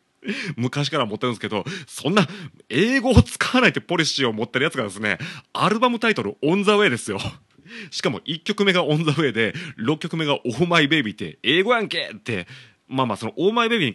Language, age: Japanese, 30-49